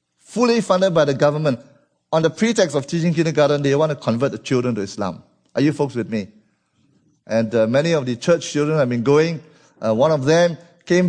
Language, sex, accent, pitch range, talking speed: English, male, Malaysian, 120-175 Hz, 210 wpm